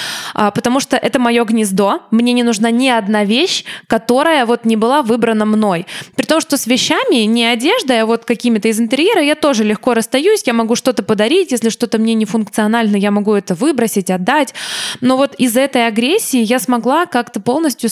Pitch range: 220-255 Hz